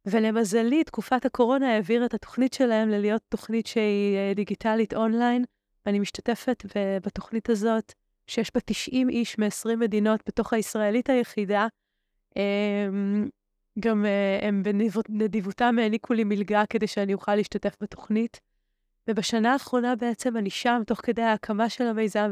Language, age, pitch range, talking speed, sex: Hebrew, 20-39, 205-230 Hz, 125 wpm, female